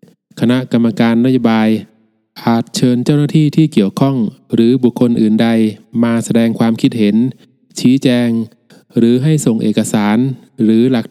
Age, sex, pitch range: 20-39, male, 110-130 Hz